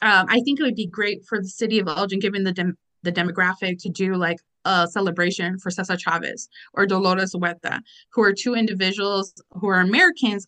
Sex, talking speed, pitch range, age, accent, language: female, 200 wpm, 185-225 Hz, 30-49, American, English